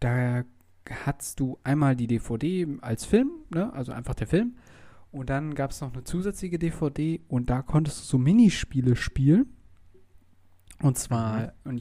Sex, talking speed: male, 160 wpm